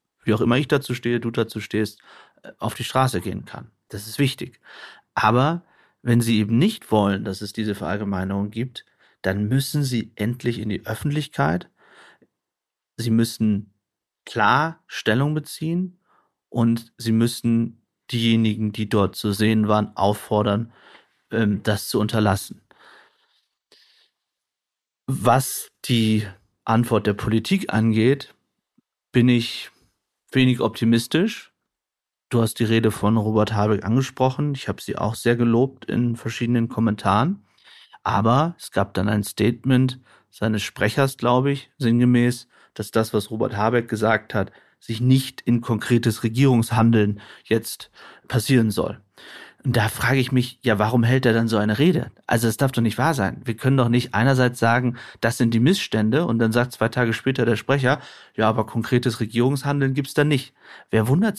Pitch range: 110-130 Hz